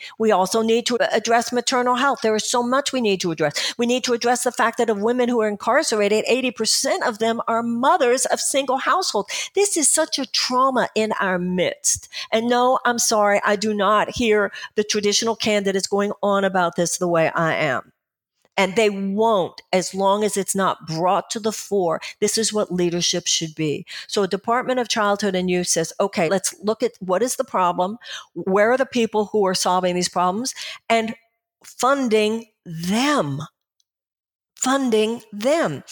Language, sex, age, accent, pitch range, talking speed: English, female, 50-69, American, 195-245 Hz, 185 wpm